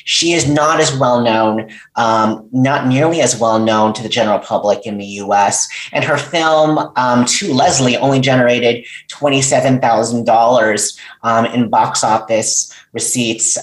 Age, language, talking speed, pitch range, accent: 30-49, English, 155 wpm, 120-145 Hz, American